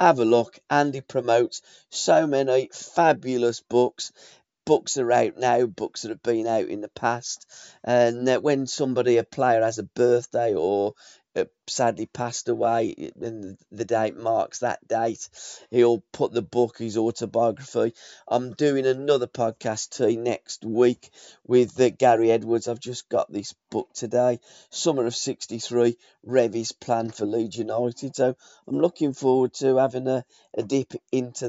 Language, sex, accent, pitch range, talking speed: English, male, British, 115-130 Hz, 150 wpm